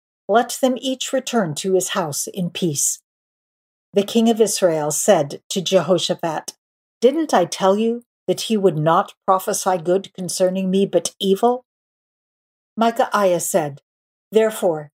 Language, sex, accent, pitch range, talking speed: English, female, American, 170-220 Hz, 130 wpm